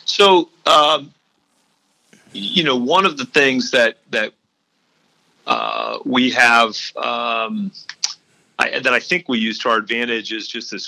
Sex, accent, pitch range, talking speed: male, American, 110-145 Hz, 145 wpm